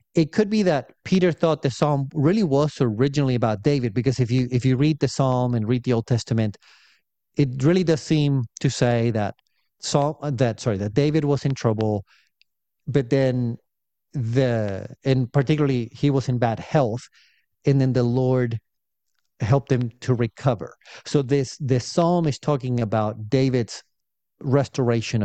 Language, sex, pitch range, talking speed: English, male, 120-150 Hz, 160 wpm